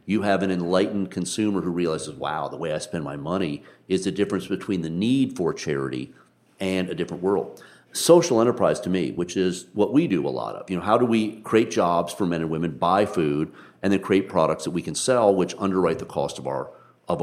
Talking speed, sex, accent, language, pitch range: 230 wpm, male, American, English, 85-115 Hz